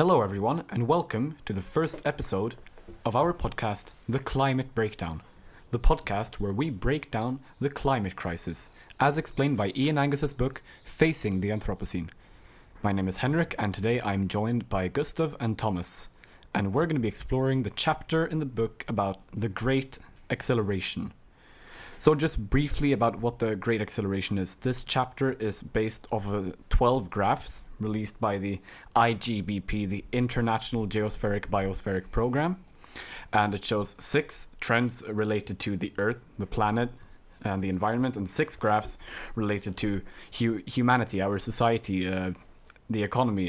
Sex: male